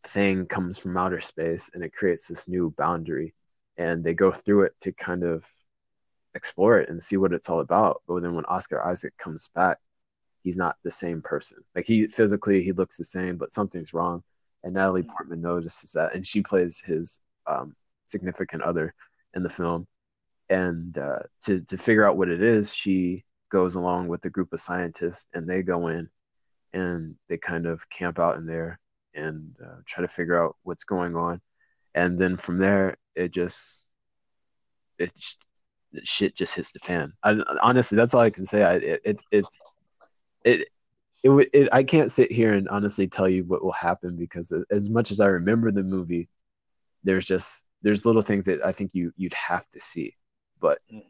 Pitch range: 85-100 Hz